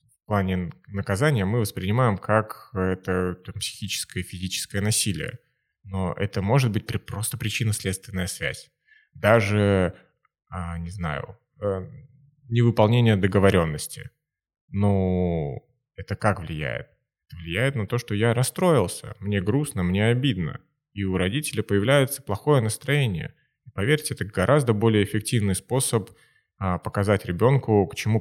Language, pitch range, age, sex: Russian, 95-125 Hz, 20-39, male